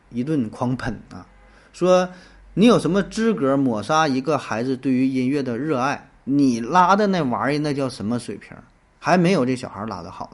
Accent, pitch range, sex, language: native, 115-165 Hz, male, Chinese